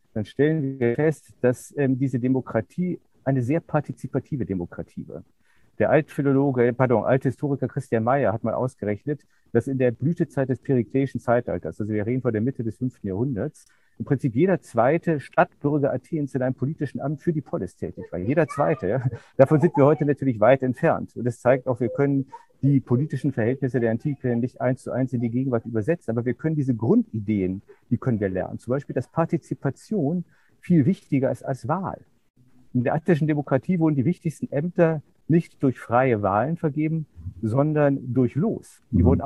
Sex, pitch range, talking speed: male, 120-155 Hz, 180 wpm